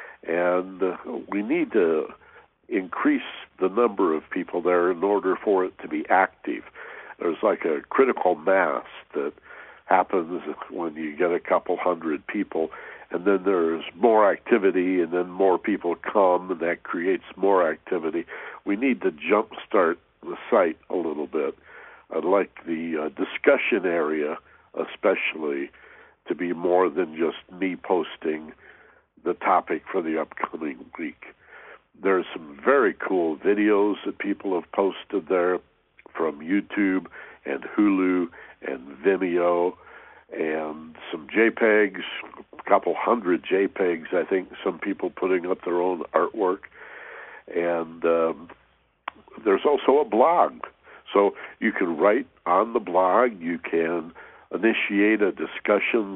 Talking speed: 135 wpm